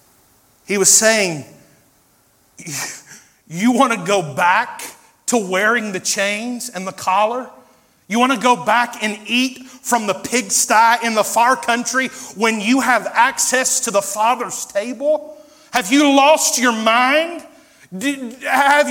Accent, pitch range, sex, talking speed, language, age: American, 230-295 Hz, male, 135 wpm, English, 40-59